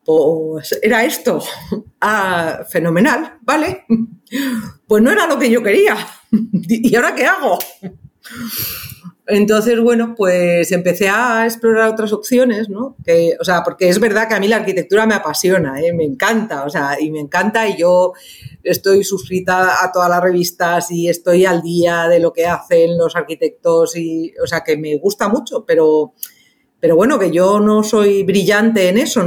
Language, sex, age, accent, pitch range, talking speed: Spanish, female, 40-59, Spanish, 175-235 Hz, 170 wpm